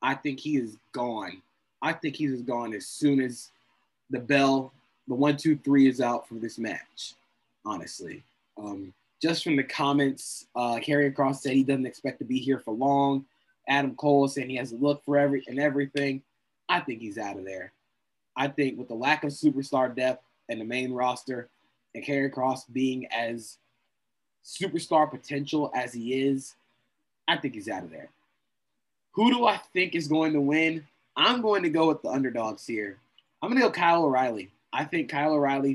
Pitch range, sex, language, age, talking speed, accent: 130-150 Hz, male, English, 20-39, 190 wpm, American